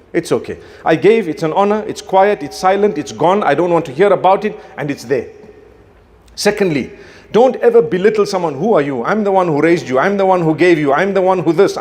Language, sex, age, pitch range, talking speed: English, male, 50-69, 165-230 Hz, 245 wpm